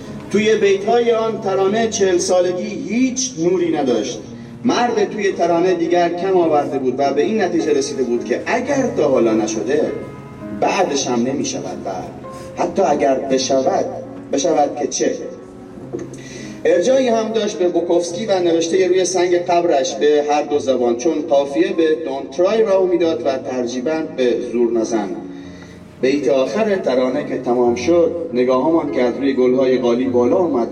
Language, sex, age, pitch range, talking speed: Persian, male, 40-59, 125-215 Hz, 150 wpm